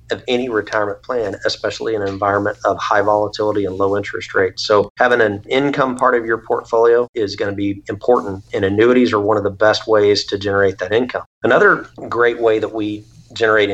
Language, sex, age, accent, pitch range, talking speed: English, male, 40-59, American, 105-115 Hz, 200 wpm